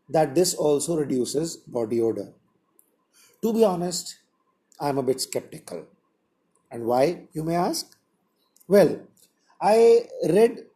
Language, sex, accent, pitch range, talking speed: English, male, Indian, 135-200 Hz, 125 wpm